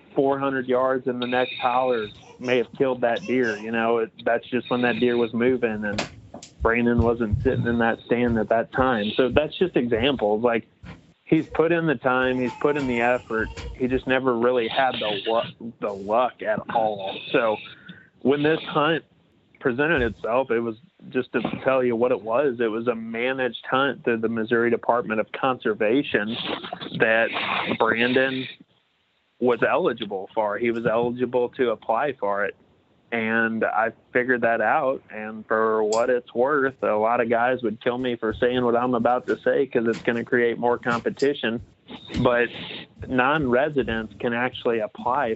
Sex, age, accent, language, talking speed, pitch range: male, 30-49, American, English, 175 wpm, 115-125 Hz